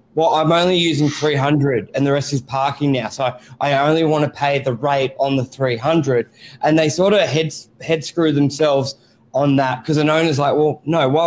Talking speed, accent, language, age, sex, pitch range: 210 wpm, Australian, English, 20-39, male, 135-160 Hz